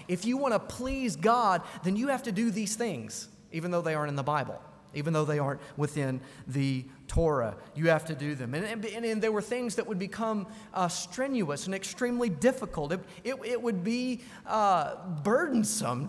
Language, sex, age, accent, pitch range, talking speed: English, male, 30-49, American, 170-230 Hz, 200 wpm